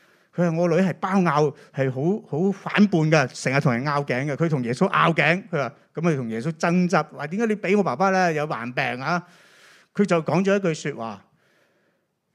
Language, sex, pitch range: Chinese, male, 130-210 Hz